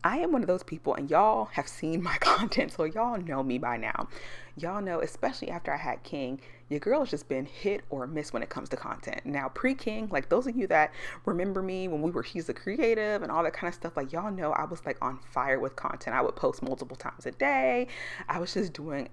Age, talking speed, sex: 30-49, 250 wpm, female